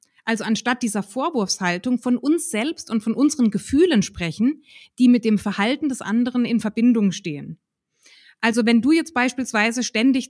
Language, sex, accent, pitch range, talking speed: German, female, German, 200-245 Hz, 155 wpm